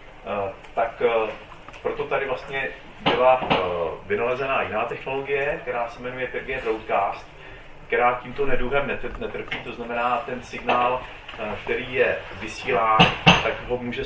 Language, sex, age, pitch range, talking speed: Czech, male, 30-49, 105-140 Hz, 135 wpm